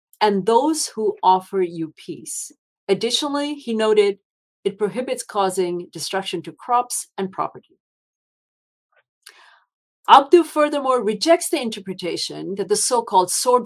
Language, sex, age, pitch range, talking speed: Turkish, female, 50-69, 175-250 Hz, 115 wpm